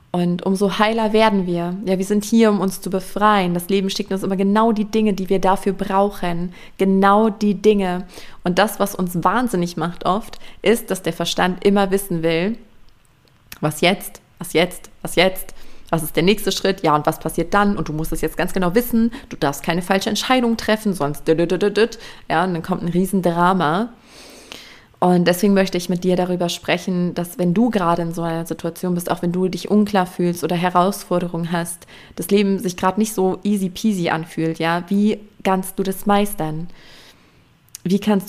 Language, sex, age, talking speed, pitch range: German, female, 20-39, 195 wpm, 170-200 Hz